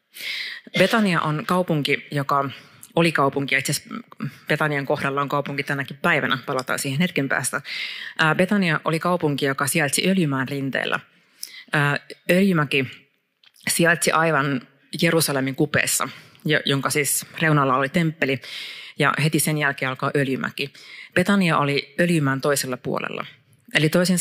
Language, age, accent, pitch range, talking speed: Finnish, 30-49, native, 140-165 Hz, 120 wpm